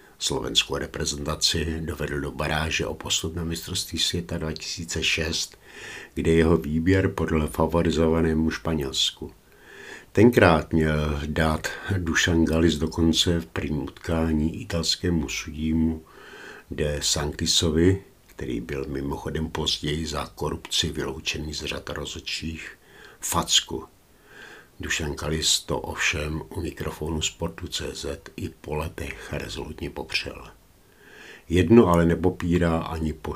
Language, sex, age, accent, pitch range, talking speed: Czech, male, 60-79, native, 80-85 Hz, 105 wpm